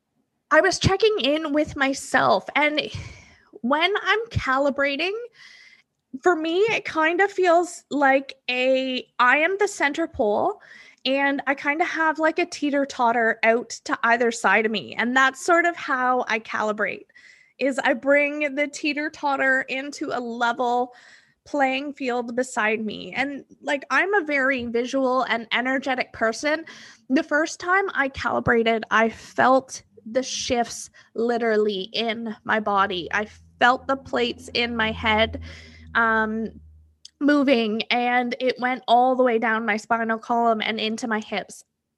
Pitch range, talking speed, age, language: 225-285 Hz, 145 wpm, 20-39, English